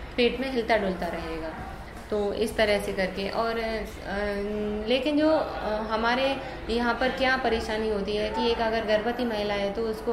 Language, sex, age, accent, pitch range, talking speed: English, female, 20-39, Indian, 205-245 Hz, 165 wpm